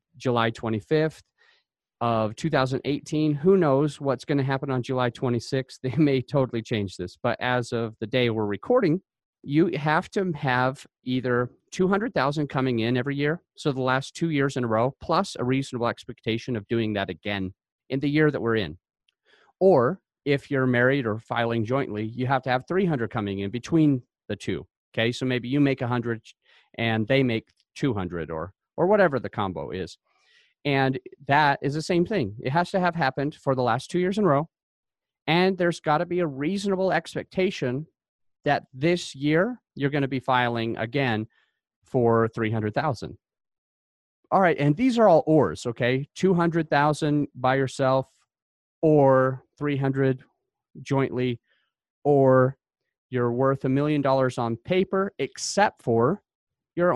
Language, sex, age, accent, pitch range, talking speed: English, male, 40-59, American, 120-150 Hz, 160 wpm